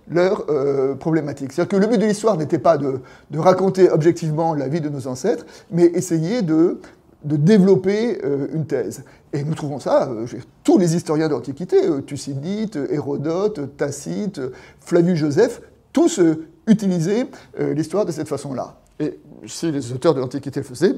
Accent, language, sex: French, French, male